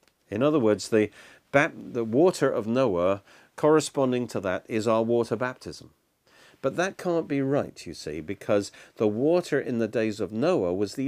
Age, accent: 50-69, British